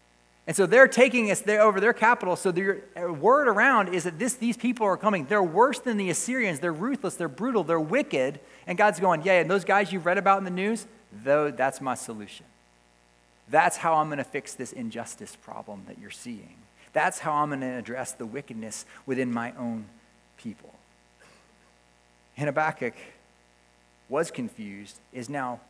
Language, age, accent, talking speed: English, 40-59, American, 180 wpm